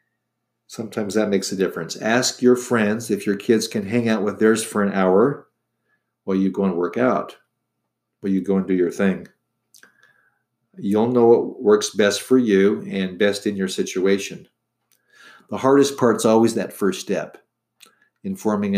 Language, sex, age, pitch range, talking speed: English, male, 50-69, 95-115 Hz, 170 wpm